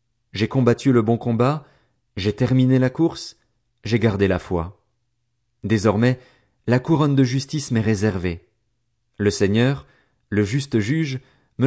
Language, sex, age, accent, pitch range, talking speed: French, male, 40-59, French, 110-140 Hz, 135 wpm